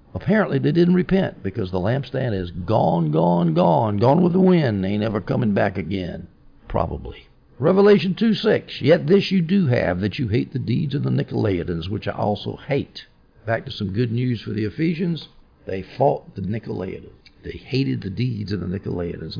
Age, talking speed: 60-79, 185 wpm